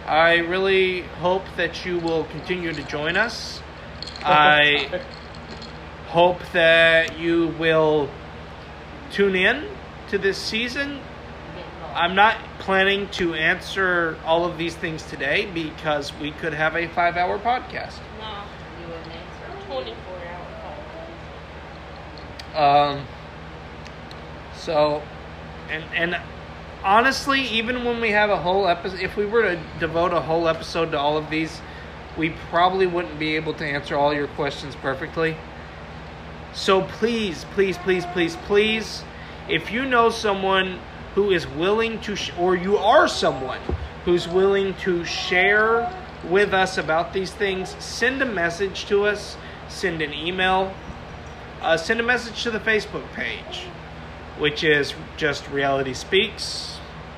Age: 30-49